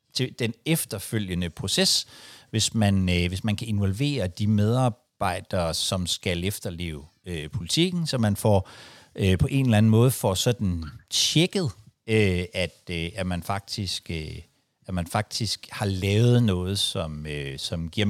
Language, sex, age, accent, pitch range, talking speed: Danish, male, 60-79, native, 95-125 Hz, 155 wpm